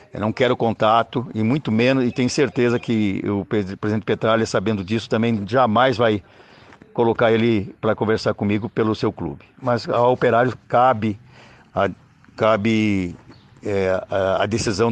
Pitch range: 105-125 Hz